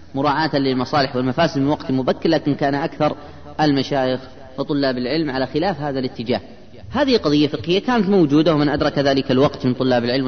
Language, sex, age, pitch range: Arabic, female, 30-49, 125-180 Hz